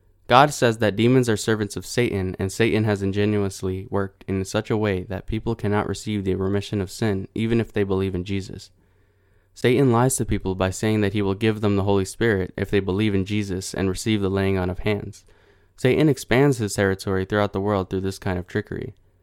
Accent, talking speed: American, 215 wpm